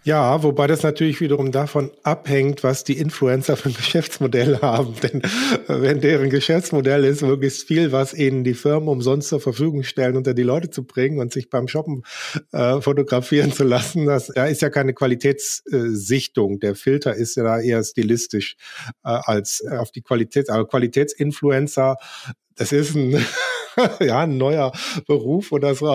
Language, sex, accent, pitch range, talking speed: German, male, German, 120-150 Hz, 165 wpm